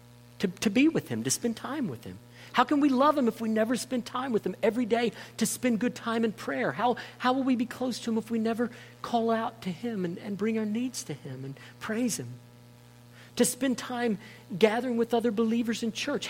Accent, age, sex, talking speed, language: American, 50-69, male, 235 wpm, English